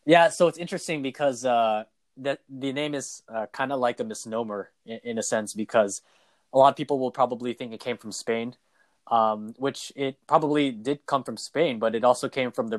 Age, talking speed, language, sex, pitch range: 20-39, 215 wpm, English, male, 110-125 Hz